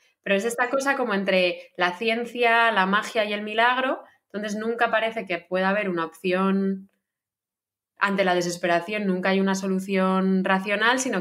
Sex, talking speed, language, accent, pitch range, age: female, 160 wpm, Spanish, Spanish, 175-205 Hz, 20-39